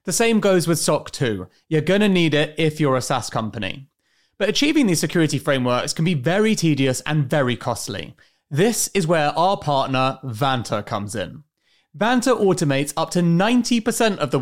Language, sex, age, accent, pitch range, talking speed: English, male, 30-49, British, 115-190 Hz, 180 wpm